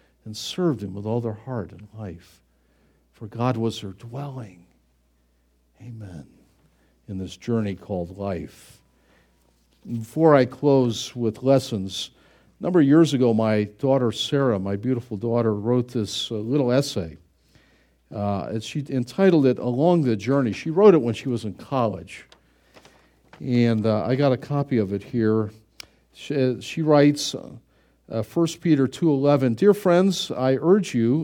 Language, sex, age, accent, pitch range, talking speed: English, male, 50-69, American, 100-140 Hz, 150 wpm